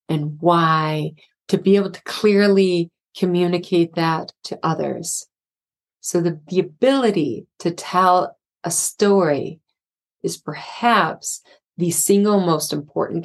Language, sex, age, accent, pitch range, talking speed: English, female, 30-49, American, 160-195 Hz, 115 wpm